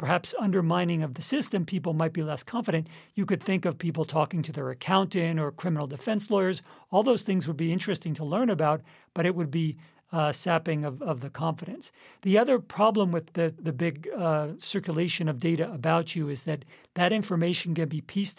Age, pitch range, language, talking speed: 50-69, 155-180 Hz, English, 200 wpm